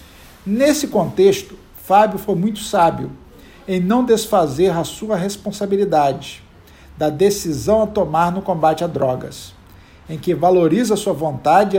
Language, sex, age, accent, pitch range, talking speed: Portuguese, male, 50-69, Brazilian, 155-200 Hz, 135 wpm